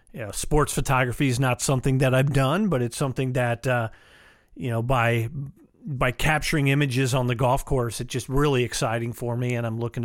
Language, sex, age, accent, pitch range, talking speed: English, male, 40-59, American, 120-150 Hz, 210 wpm